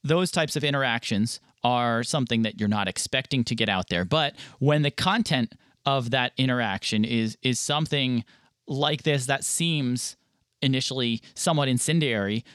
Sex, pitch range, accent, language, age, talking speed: male, 115-145 Hz, American, English, 30-49, 150 wpm